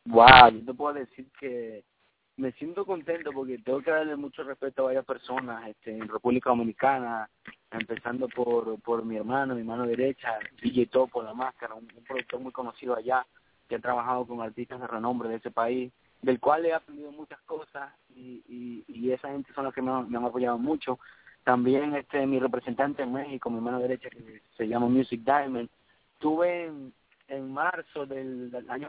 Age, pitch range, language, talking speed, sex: 30-49, 125-155 Hz, English, 185 wpm, male